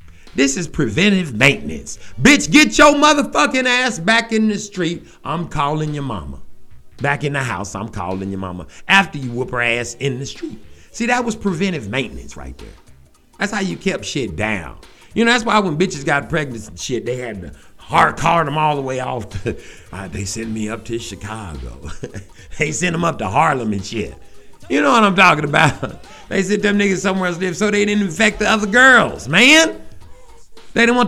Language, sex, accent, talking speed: English, male, American, 205 wpm